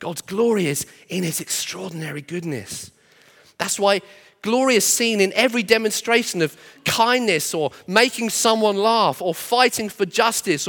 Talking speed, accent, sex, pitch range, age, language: 140 wpm, British, male, 165-235 Hz, 30-49, English